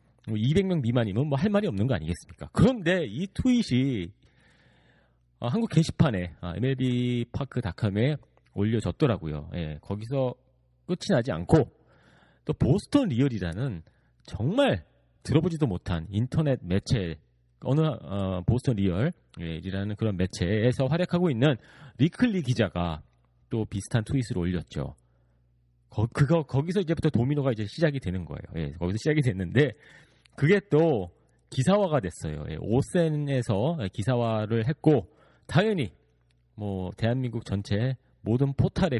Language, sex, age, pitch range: Korean, male, 40-59, 95-150 Hz